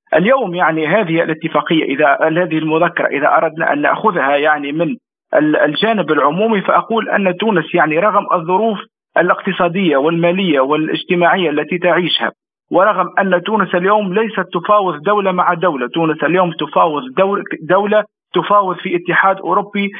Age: 50-69